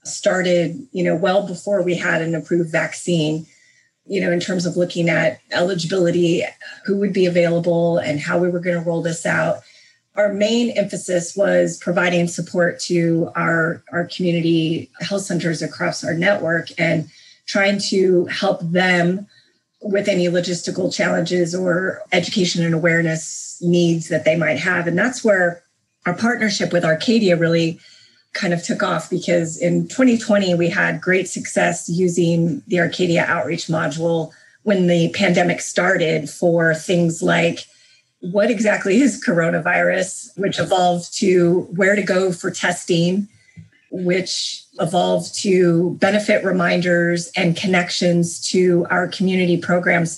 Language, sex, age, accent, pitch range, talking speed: English, female, 30-49, American, 170-190 Hz, 140 wpm